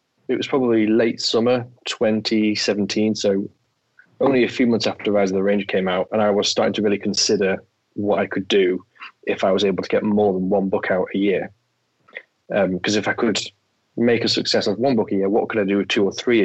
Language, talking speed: English, 230 wpm